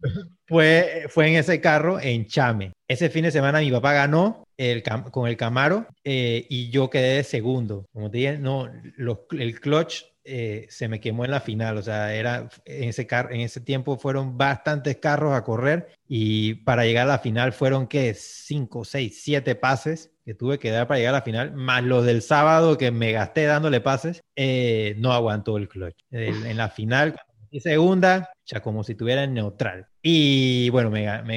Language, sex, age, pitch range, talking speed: Spanish, male, 30-49, 115-140 Hz, 195 wpm